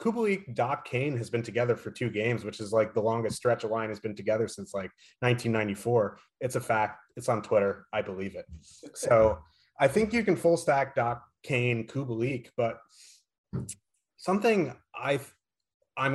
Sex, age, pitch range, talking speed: male, 30-49, 110-130 Hz, 165 wpm